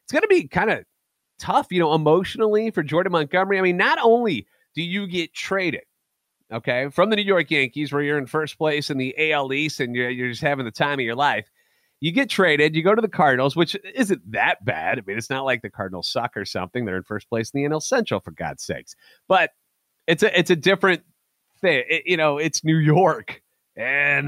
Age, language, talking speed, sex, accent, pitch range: 30-49, English, 230 wpm, male, American, 115-165 Hz